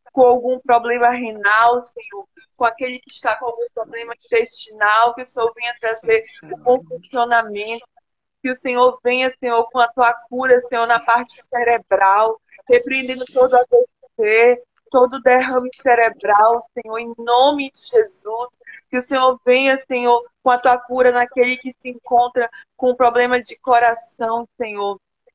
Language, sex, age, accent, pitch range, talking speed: Portuguese, female, 20-39, Brazilian, 230-255 Hz, 160 wpm